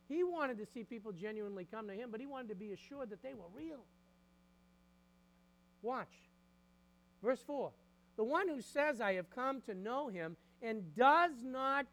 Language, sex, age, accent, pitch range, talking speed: English, male, 50-69, American, 175-260 Hz, 175 wpm